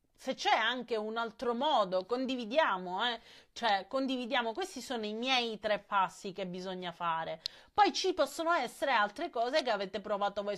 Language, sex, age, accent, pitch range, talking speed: Italian, female, 30-49, native, 200-260 Hz, 165 wpm